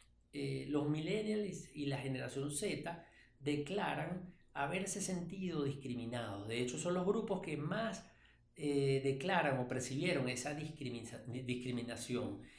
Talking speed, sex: 115 wpm, male